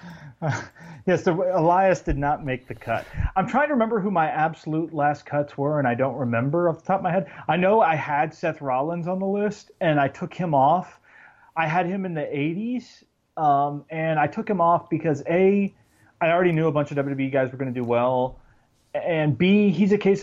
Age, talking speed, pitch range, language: 30-49, 220 wpm, 135-185 Hz, English